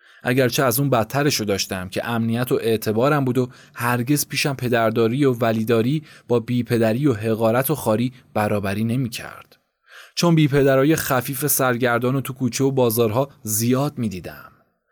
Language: Persian